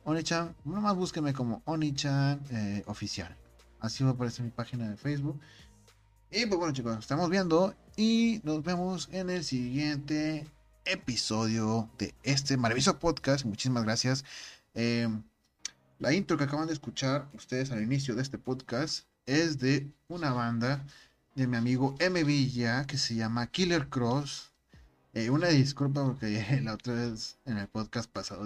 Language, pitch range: Spanish, 110-140 Hz